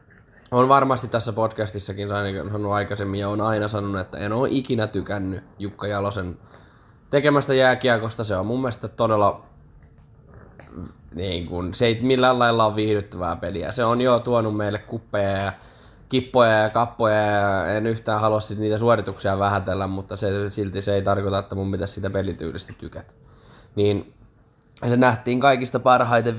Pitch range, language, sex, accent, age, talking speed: 100-125 Hz, Finnish, male, native, 20-39, 150 wpm